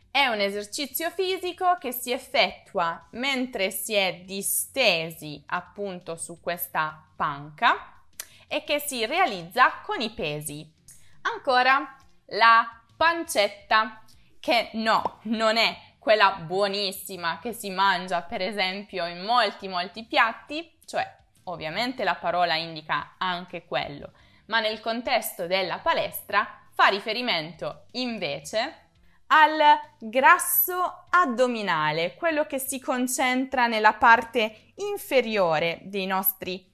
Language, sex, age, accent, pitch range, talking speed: Italian, female, 20-39, native, 180-260 Hz, 110 wpm